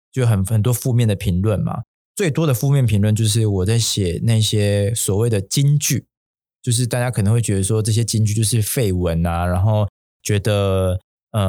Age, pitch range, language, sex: 20-39, 95-120 Hz, Chinese, male